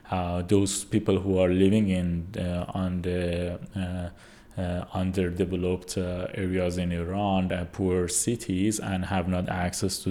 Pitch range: 90-95 Hz